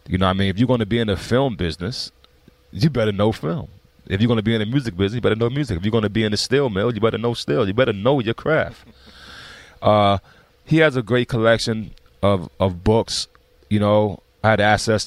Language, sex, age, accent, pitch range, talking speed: English, male, 30-49, American, 100-130 Hz, 235 wpm